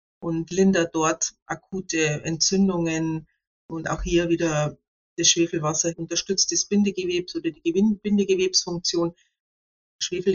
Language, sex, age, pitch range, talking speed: German, female, 50-69, 165-195 Hz, 105 wpm